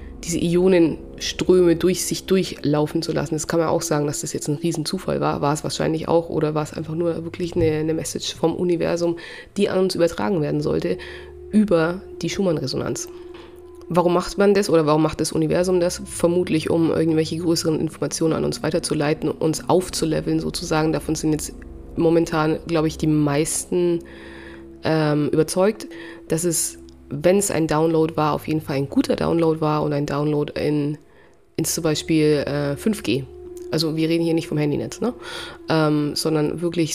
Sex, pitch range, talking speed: female, 150-170 Hz, 175 wpm